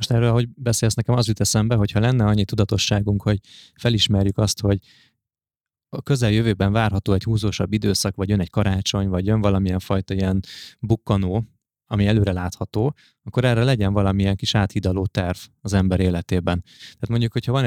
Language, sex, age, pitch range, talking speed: Hungarian, male, 20-39, 95-115 Hz, 165 wpm